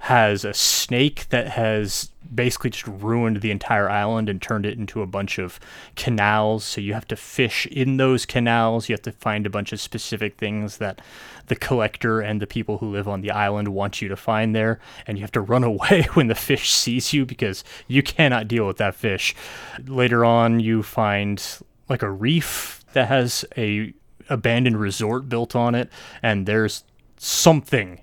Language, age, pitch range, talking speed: English, 20-39, 105-125 Hz, 190 wpm